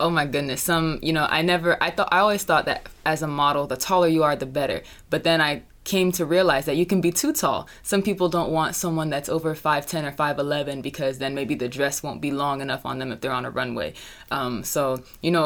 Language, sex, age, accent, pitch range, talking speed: English, female, 20-39, American, 145-165 Hz, 250 wpm